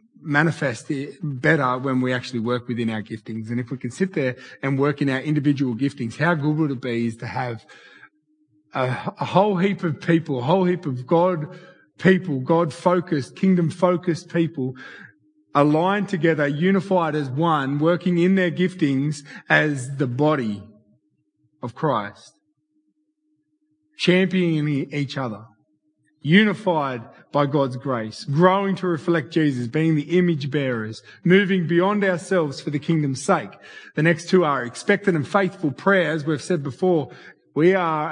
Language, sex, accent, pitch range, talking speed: English, male, Australian, 140-180 Hz, 145 wpm